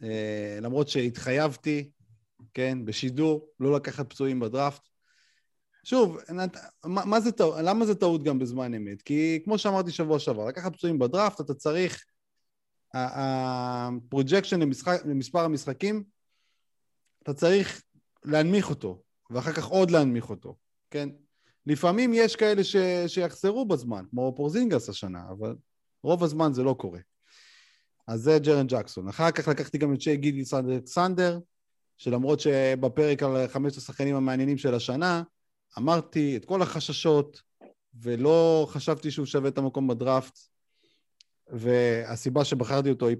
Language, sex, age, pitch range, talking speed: Hebrew, male, 30-49, 125-165 Hz, 130 wpm